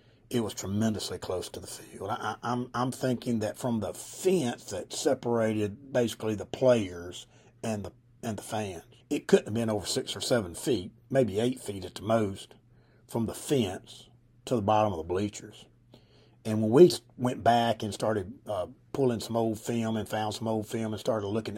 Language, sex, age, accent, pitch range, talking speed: English, male, 50-69, American, 110-125 Hz, 190 wpm